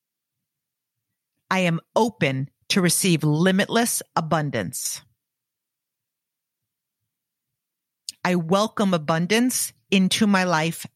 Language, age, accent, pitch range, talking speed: English, 50-69, American, 145-185 Hz, 70 wpm